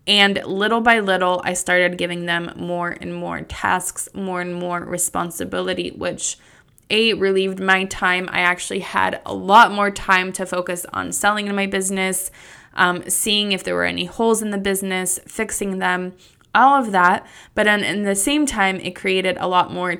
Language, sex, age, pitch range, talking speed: English, female, 20-39, 180-200 Hz, 185 wpm